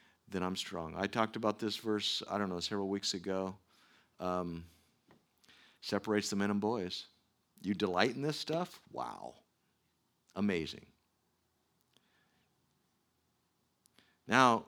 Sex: male